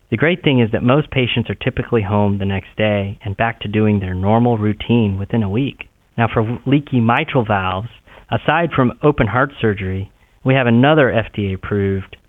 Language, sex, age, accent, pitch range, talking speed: English, male, 40-59, American, 100-120 Hz, 180 wpm